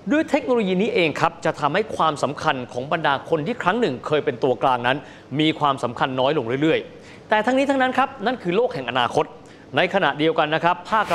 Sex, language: male, Thai